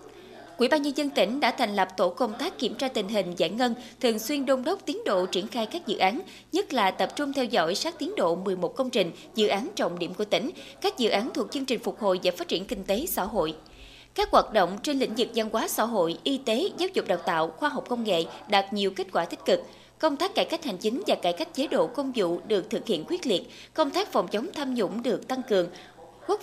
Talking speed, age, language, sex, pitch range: 260 wpm, 20-39, Vietnamese, female, 205-285 Hz